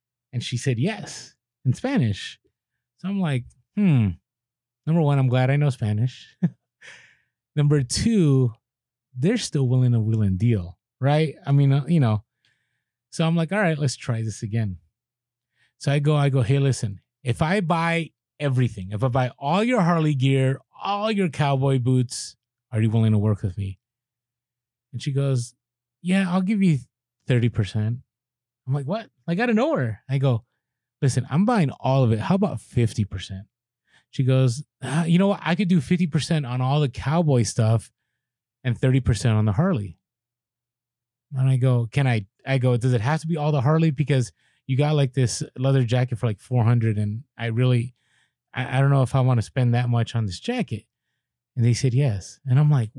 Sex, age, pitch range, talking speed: male, 30-49, 120-145 Hz, 185 wpm